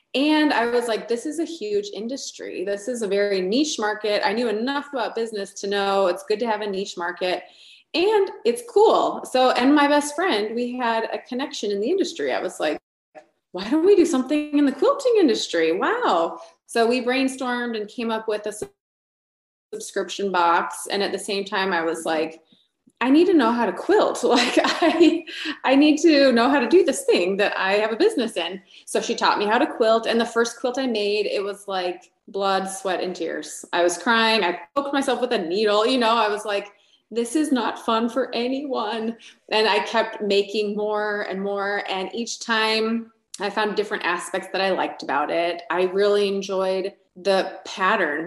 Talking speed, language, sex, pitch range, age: 205 wpm, English, female, 195-265 Hz, 20-39